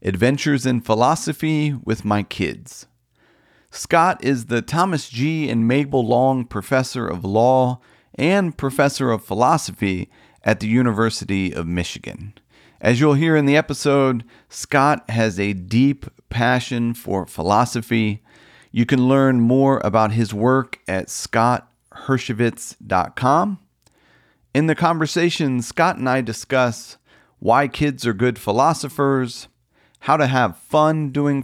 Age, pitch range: 40-59, 110-140 Hz